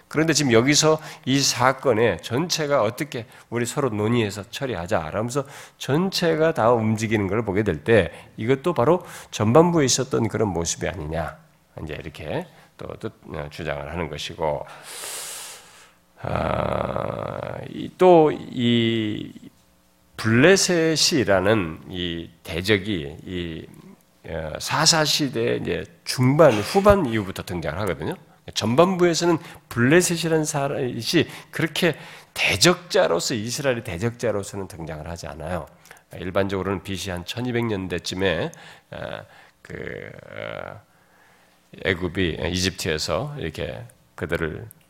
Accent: native